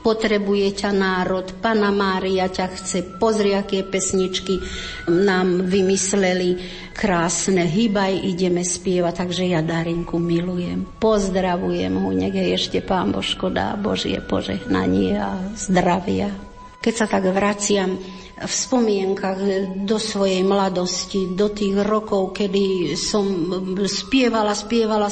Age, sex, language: 50-69, female, Slovak